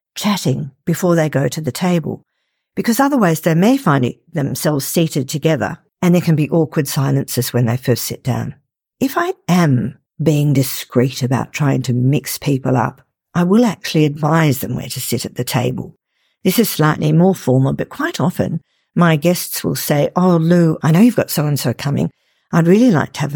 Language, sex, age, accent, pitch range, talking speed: English, female, 50-69, Australian, 140-180 Hz, 190 wpm